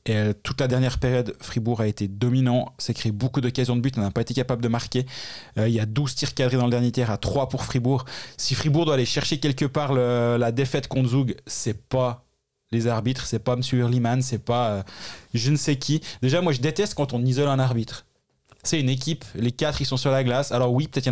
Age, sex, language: 20-39, male, French